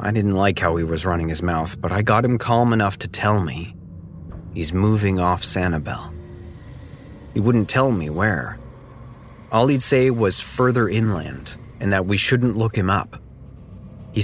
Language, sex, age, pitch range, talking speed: English, male, 30-49, 85-115 Hz, 175 wpm